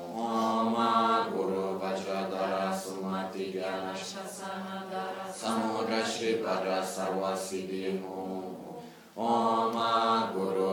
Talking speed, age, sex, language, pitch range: 60 wpm, 20-39, male, Italian, 95-115 Hz